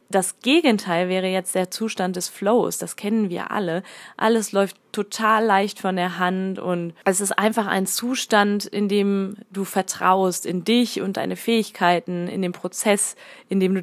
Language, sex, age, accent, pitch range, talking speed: German, female, 20-39, German, 180-215 Hz, 175 wpm